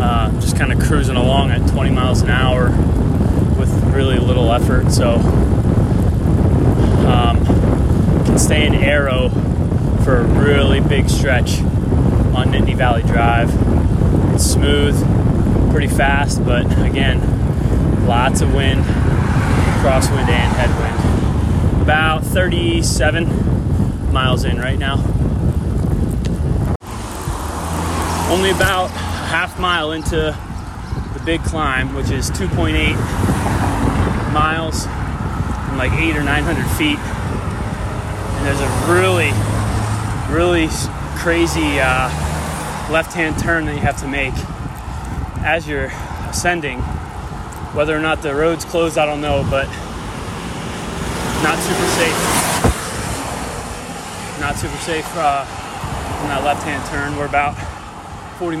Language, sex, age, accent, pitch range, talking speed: English, male, 20-39, American, 90-140 Hz, 110 wpm